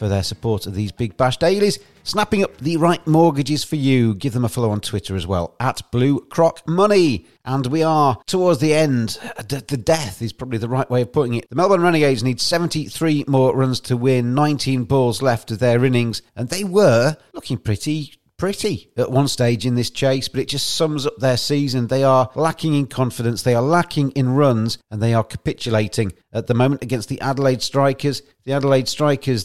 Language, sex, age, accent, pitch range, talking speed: English, male, 40-59, British, 120-145 Hz, 205 wpm